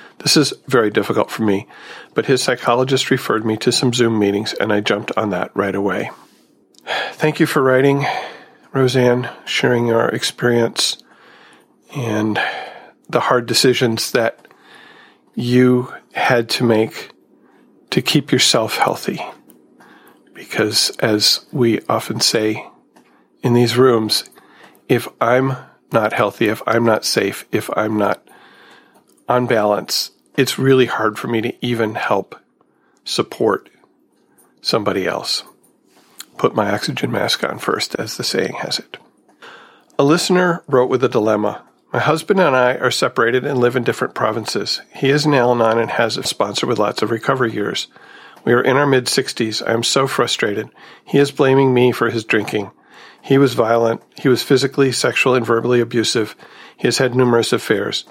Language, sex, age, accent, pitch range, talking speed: English, male, 40-59, American, 115-130 Hz, 150 wpm